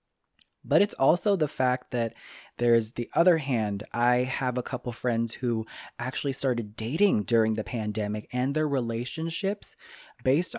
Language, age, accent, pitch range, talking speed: English, 20-39, American, 115-145 Hz, 145 wpm